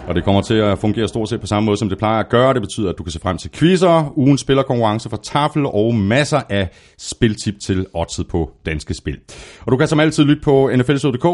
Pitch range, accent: 85-145 Hz, native